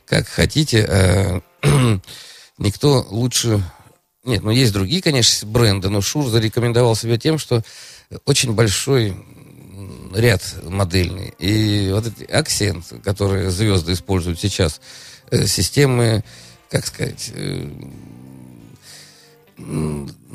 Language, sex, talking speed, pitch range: Russian, male, 95 wpm, 95-120 Hz